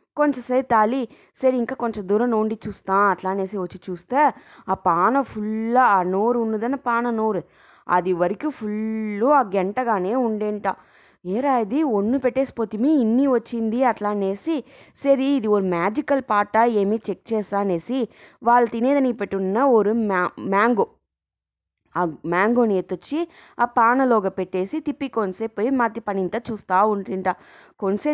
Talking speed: 130 wpm